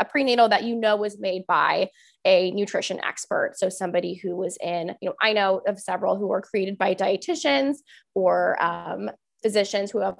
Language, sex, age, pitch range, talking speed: English, female, 20-39, 190-275 Hz, 190 wpm